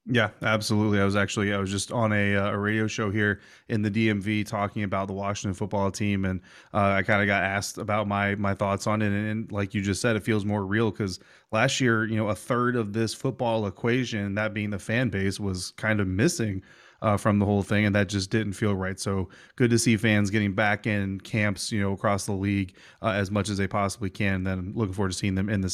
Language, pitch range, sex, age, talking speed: English, 100-115 Hz, male, 30-49, 250 wpm